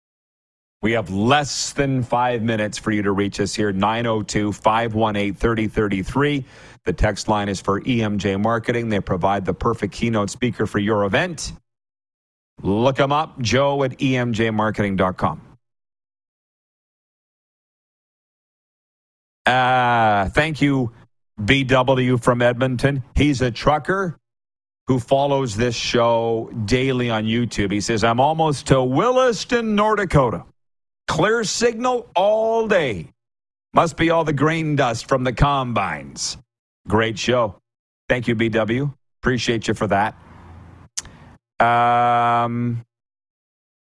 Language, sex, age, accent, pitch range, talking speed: English, male, 40-59, American, 105-135 Hz, 110 wpm